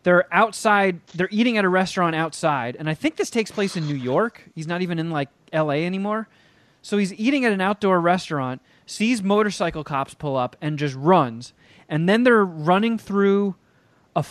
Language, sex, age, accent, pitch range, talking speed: English, male, 30-49, American, 150-200 Hz, 190 wpm